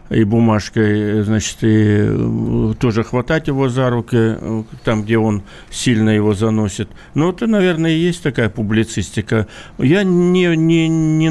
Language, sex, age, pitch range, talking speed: Russian, male, 60-79, 110-140 Hz, 140 wpm